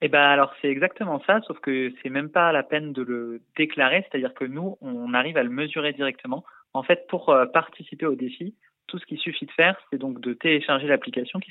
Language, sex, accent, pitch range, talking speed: French, male, French, 130-165 Hz, 225 wpm